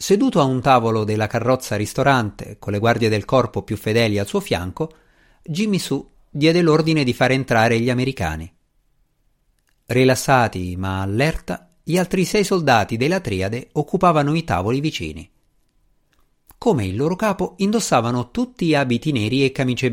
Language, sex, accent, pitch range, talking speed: Italian, male, native, 110-160 Hz, 150 wpm